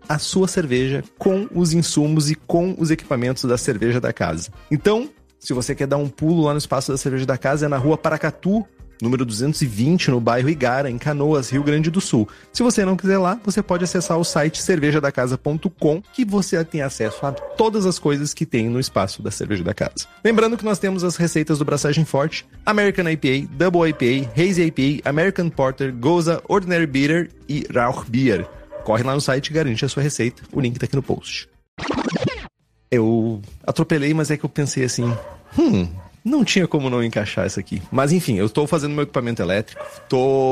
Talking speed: 195 wpm